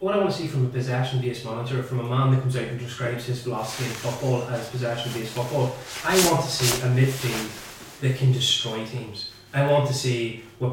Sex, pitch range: male, 115-130 Hz